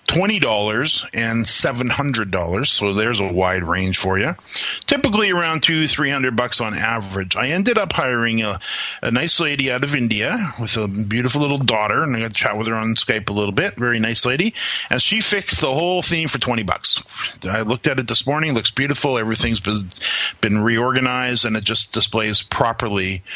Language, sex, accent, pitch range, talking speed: English, male, American, 105-135 Hz, 200 wpm